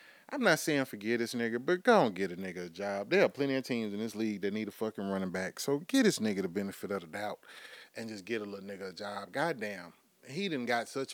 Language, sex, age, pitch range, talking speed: English, male, 30-49, 115-180 Hz, 275 wpm